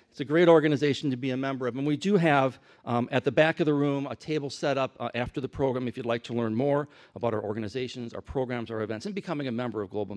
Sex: male